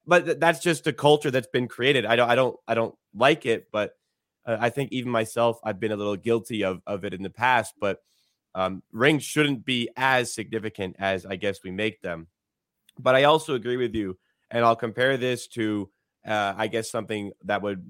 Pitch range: 110-140 Hz